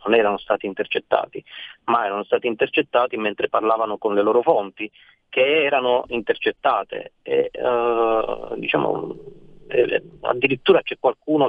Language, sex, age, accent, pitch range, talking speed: Italian, male, 30-49, native, 105-130 Hz, 125 wpm